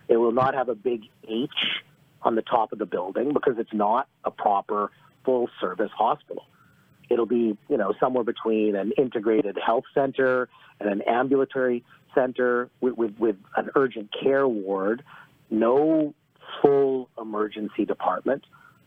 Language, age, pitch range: Punjabi, 40-59, 120-145 Hz